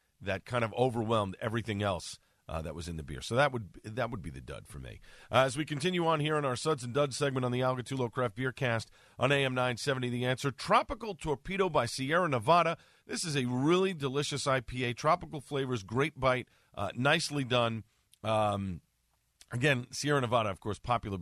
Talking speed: 200 wpm